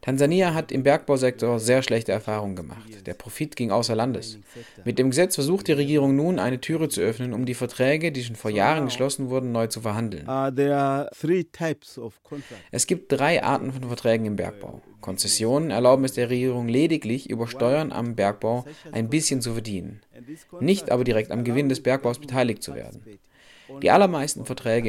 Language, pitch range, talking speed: German, 115-140 Hz, 170 wpm